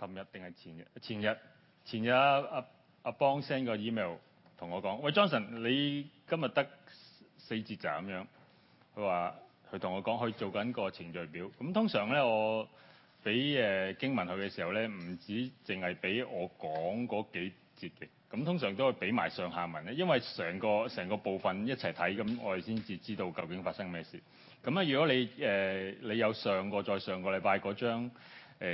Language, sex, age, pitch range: Chinese, male, 30-49, 100-145 Hz